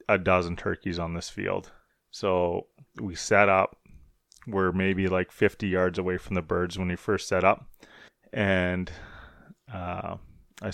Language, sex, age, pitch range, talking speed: English, male, 30-49, 90-100 Hz, 150 wpm